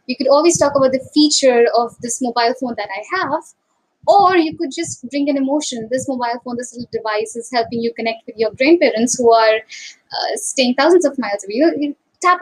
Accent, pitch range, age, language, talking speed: Indian, 250-335 Hz, 10-29, English, 215 wpm